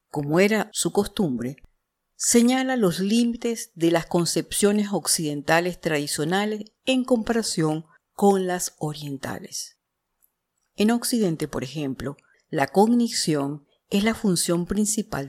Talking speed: 105 wpm